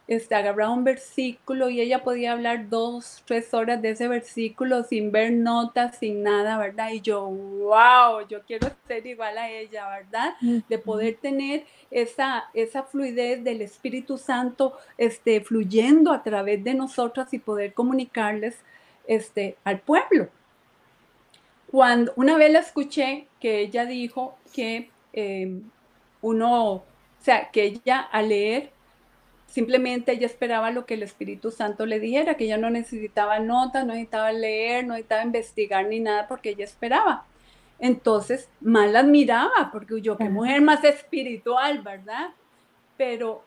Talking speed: 145 wpm